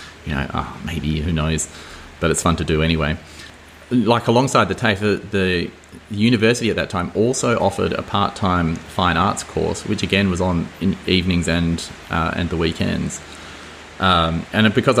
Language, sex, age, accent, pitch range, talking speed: English, male, 30-49, Australian, 80-100 Hz, 170 wpm